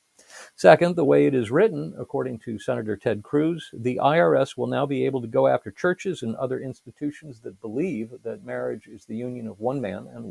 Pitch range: 120-150 Hz